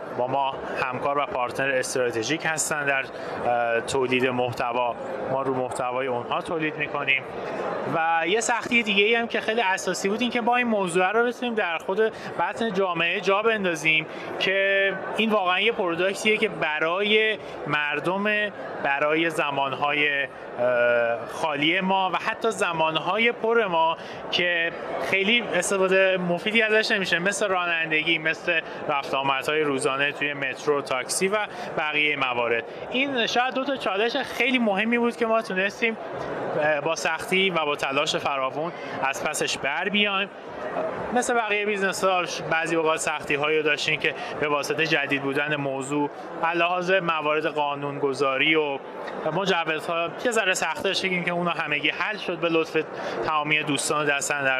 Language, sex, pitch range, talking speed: Persian, male, 145-200 Hz, 140 wpm